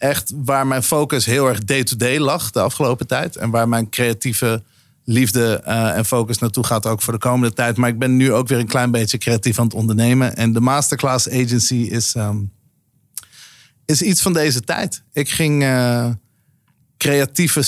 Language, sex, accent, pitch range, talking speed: Dutch, male, Dutch, 115-135 Hz, 180 wpm